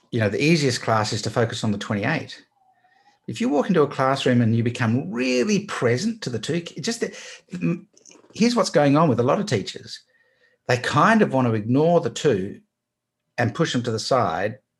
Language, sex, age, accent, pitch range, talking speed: English, male, 50-69, Australian, 115-165 Hz, 200 wpm